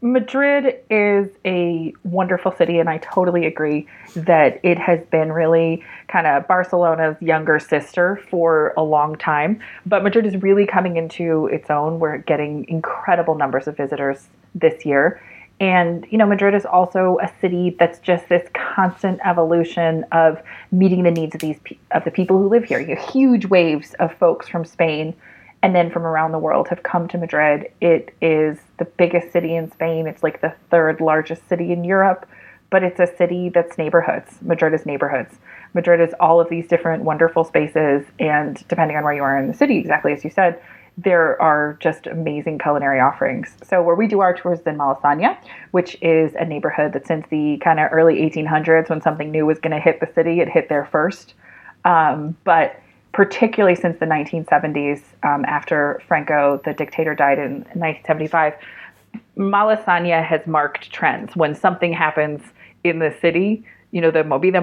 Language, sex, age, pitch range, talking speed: English, female, 30-49, 155-180 Hz, 180 wpm